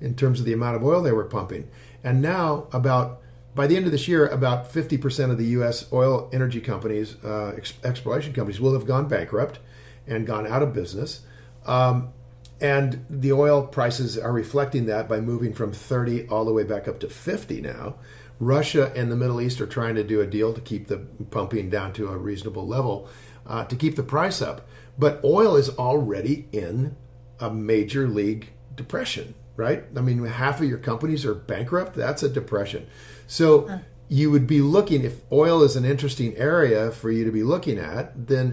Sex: male